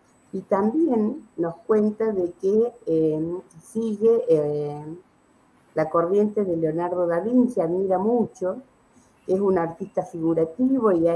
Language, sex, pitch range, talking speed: Spanish, female, 160-195 Hz, 125 wpm